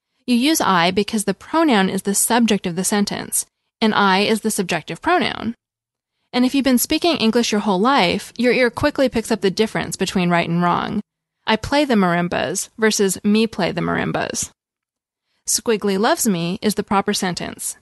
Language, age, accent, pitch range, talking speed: English, 20-39, American, 190-235 Hz, 180 wpm